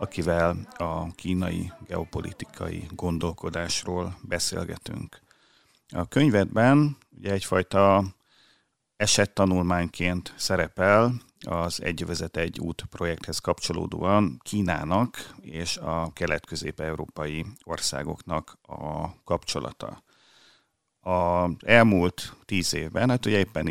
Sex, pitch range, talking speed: male, 80-95 Hz, 80 wpm